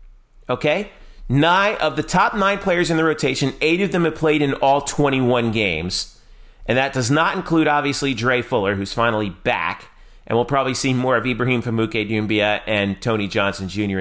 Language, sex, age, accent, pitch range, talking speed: English, male, 40-59, American, 105-140 Hz, 185 wpm